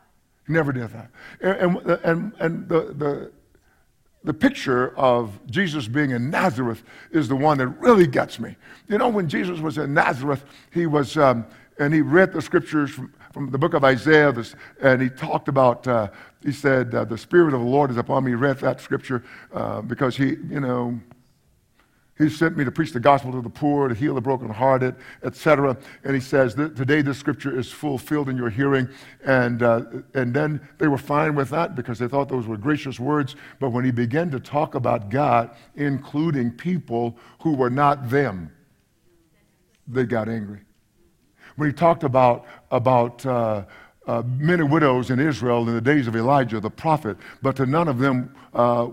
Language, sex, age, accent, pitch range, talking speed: English, male, 50-69, American, 120-150 Hz, 185 wpm